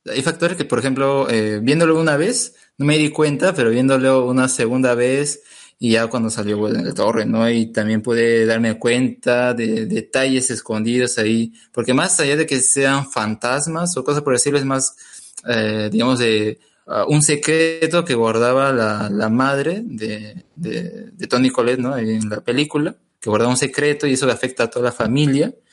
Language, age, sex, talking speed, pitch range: Spanish, 20-39, male, 190 wpm, 115-145 Hz